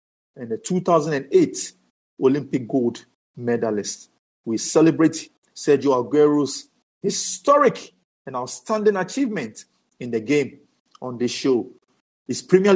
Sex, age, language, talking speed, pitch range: male, 50-69, English, 105 wpm, 130-195 Hz